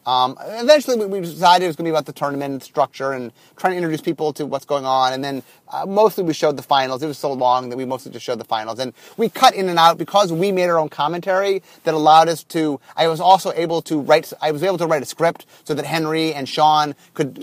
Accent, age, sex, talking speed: American, 30-49, male, 260 wpm